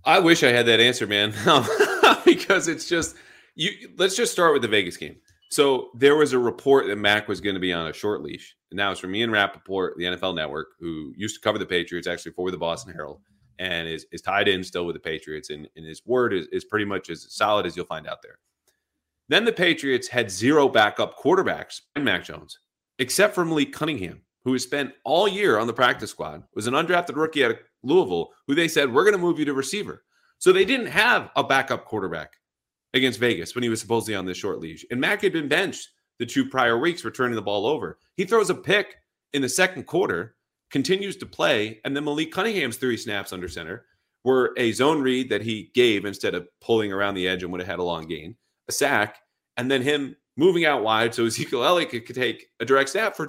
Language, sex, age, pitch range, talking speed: English, male, 30-49, 100-165 Hz, 230 wpm